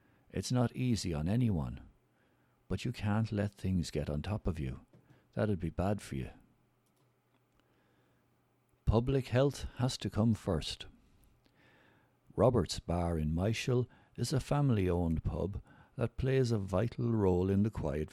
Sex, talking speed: male, 140 wpm